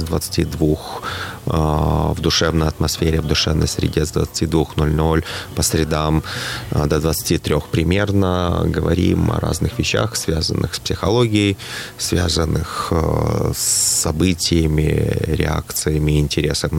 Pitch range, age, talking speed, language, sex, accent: 75-90 Hz, 30-49, 100 wpm, Russian, male, native